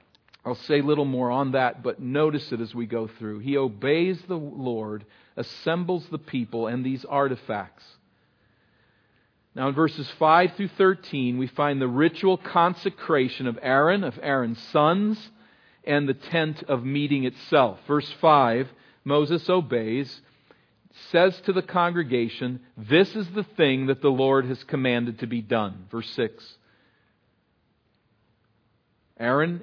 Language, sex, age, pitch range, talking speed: English, male, 50-69, 120-155 Hz, 140 wpm